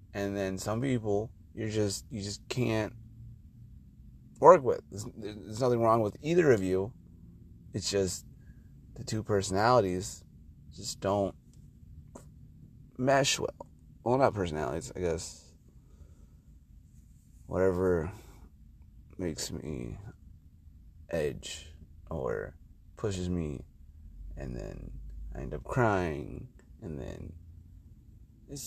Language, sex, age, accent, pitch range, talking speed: English, male, 30-49, American, 85-115 Hz, 100 wpm